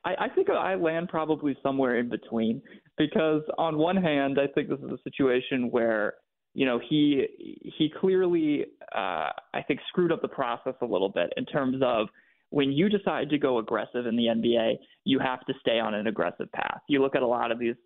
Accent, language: American, English